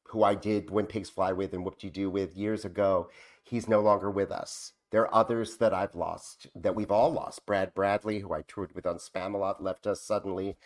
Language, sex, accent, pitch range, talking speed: English, male, American, 100-120 Hz, 225 wpm